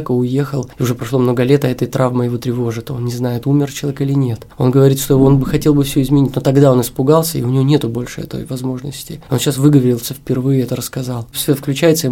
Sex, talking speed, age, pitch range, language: male, 235 wpm, 20-39, 130-145 Hz, Russian